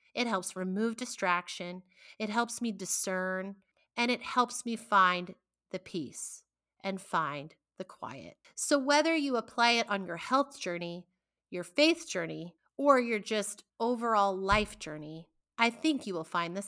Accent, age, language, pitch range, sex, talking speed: American, 30-49, English, 190-235 Hz, female, 155 wpm